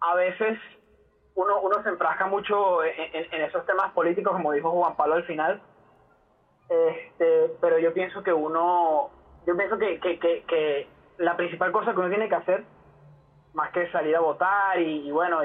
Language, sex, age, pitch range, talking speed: Spanish, male, 20-39, 170-220 Hz, 185 wpm